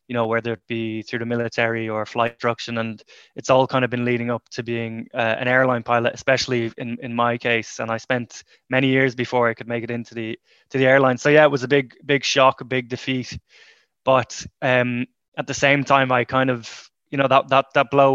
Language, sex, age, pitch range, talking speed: English, male, 20-39, 120-135 Hz, 235 wpm